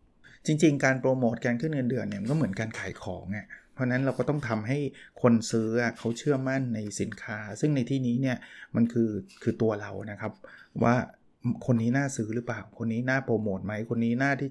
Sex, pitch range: male, 110-130 Hz